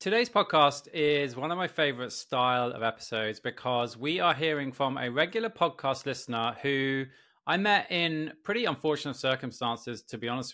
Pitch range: 125-155 Hz